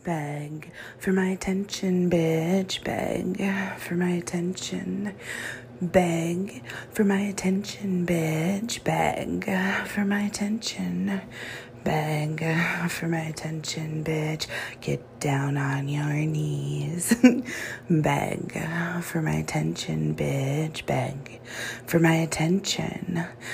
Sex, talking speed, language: female, 95 wpm, English